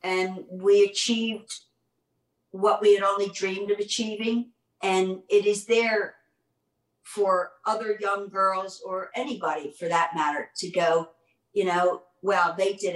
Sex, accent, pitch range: female, American, 175-205 Hz